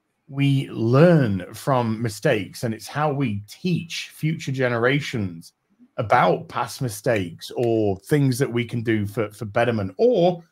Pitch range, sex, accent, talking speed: 110-155 Hz, male, British, 135 wpm